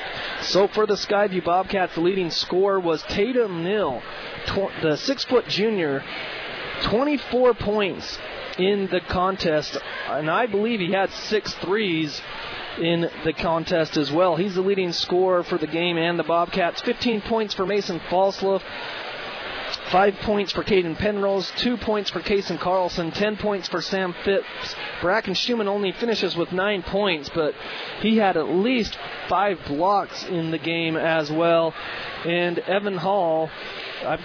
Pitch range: 165-200 Hz